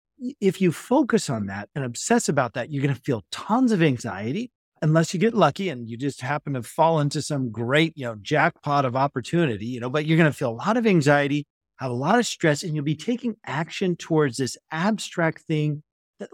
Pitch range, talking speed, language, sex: 130-190 Hz, 220 wpm, English, male